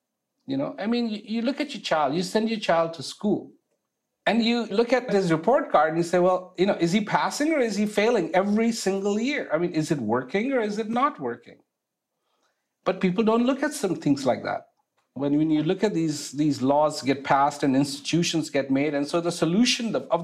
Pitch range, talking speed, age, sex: 150-220 Hz, 225 wpm, 50-69, male